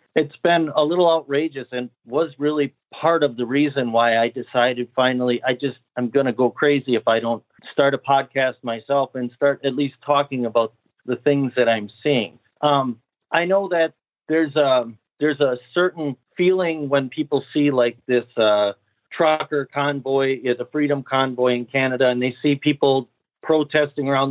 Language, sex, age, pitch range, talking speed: English, male, 40-59, 125-150 Hz, 175 wpm